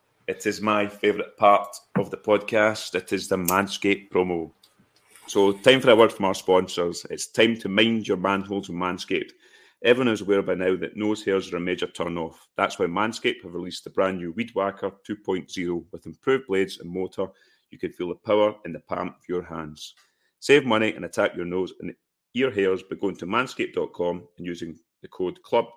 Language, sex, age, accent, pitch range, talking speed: English, male, 30-49, British, 90-105 Hz, 205 wpm